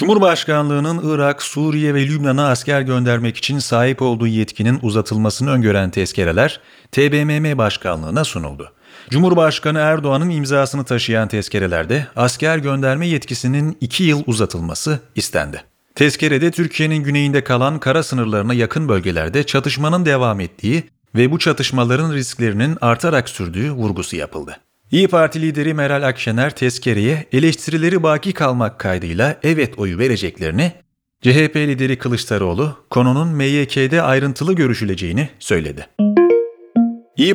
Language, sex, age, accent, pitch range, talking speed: Turkish, male, 40-59, native, 115-155 Hz, 110 wpm